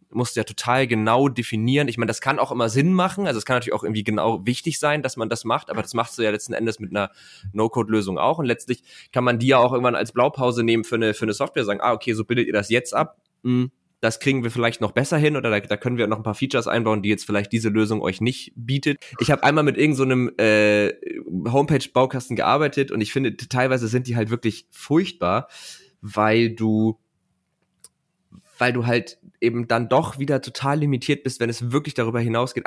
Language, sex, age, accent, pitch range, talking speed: German, male, 20-39, German, 110-140 Hz, 230 wpm